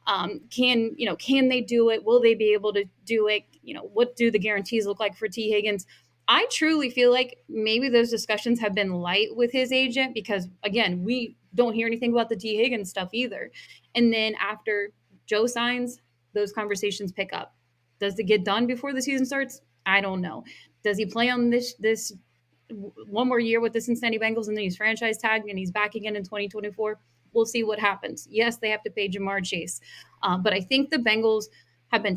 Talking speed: 215 wpm